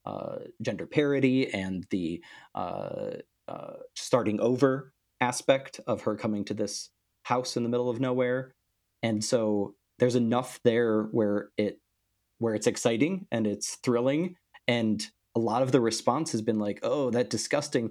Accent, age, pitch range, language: American, 30-49, 105-130 Hz, English